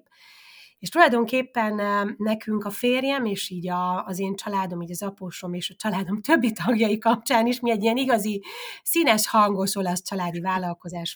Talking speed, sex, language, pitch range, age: 155 wpm, female, Hungarian, 175-225 Hz, 30-49